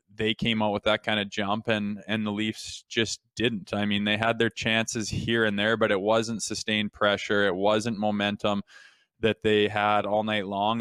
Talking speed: 205 wpm